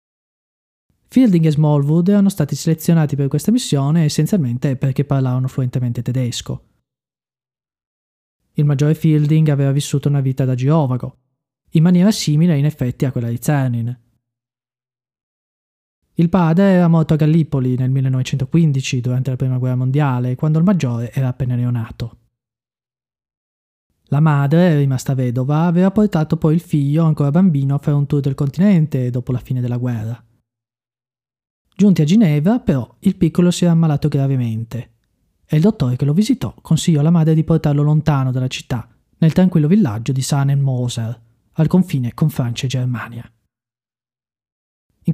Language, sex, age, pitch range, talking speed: Italian, male, 20-39, 125-160 Hz, 145 wpm